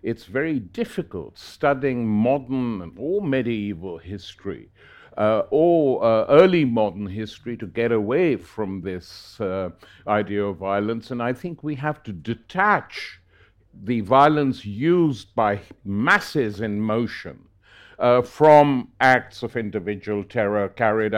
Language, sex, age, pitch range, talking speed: English, male, 60-79, 100-130 Hz, 125 wpm